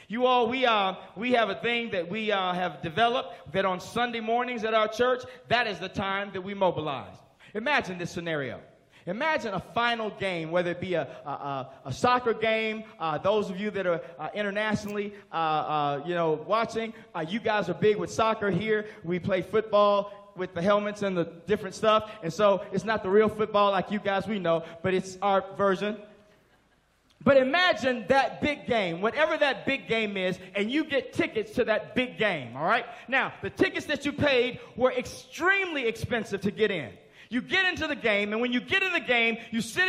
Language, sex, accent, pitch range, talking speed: English, male, American, 200-290 Hz, 205 wpm